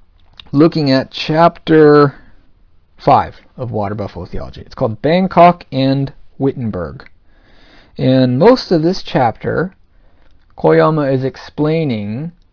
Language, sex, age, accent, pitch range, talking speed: English, male, 50-69, American, 95-140 Hz, 100 wpm